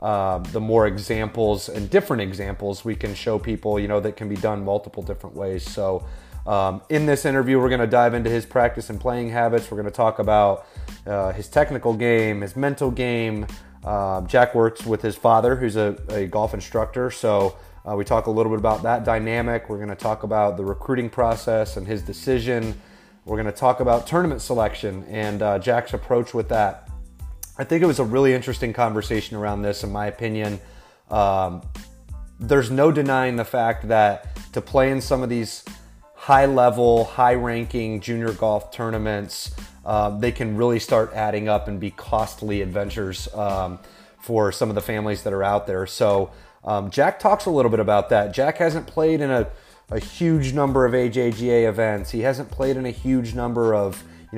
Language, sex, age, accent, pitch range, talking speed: English, male, 30-49, American, 100-120 Hz, 190 wpm